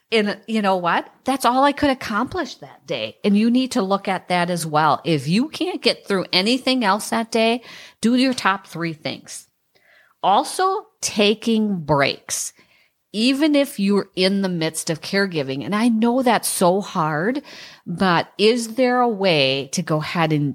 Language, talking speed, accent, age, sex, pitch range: English, 175 wpm, American, 40-59, female, 145-195 Hz